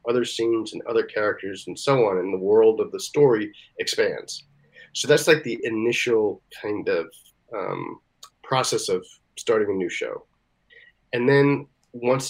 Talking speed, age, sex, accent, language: 155 wpm, 40-59, male, American, English